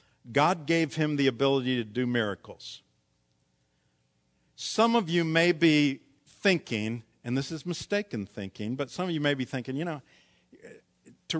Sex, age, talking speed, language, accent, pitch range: male, 50-69, 155 wpm, English, American, 110-165 Hz